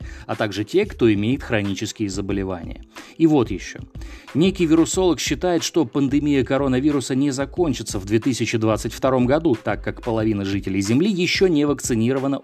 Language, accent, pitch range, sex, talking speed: Russian, native, 110-155 Hz, male, 140 wpm